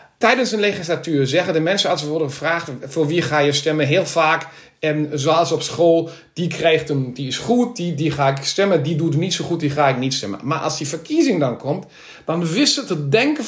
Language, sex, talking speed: Dutch, male, 240 wpm